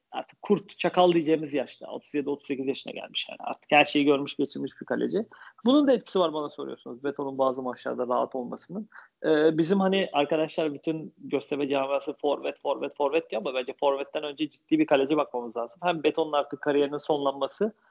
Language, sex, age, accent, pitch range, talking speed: Turkish, male, 40-59, native, 140-170 Hz, 175 wpm